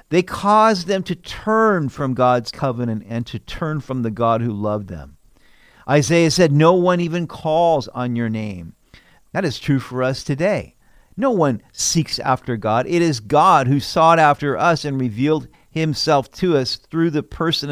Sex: male